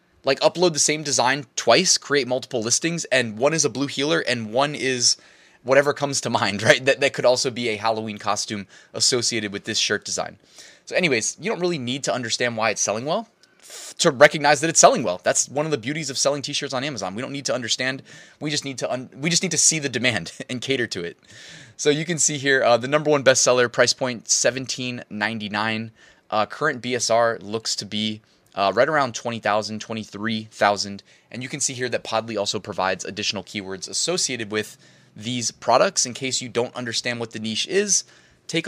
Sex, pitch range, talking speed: male, 110-150 Hz, 210 wpm